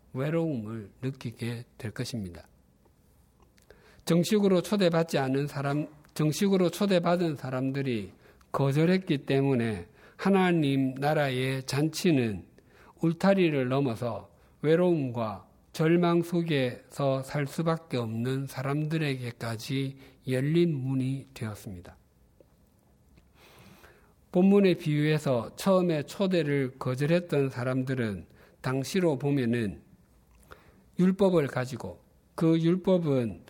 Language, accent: Korean, native